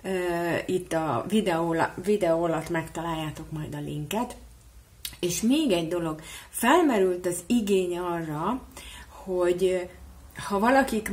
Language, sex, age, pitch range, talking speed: Hungarian, female, 30-49, 150-190 Hz, 110 wpm